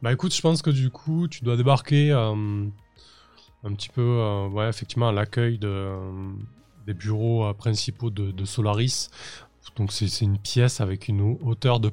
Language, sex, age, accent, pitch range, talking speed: French, male, 20-39, French, 105-130 Hz, 180 wpm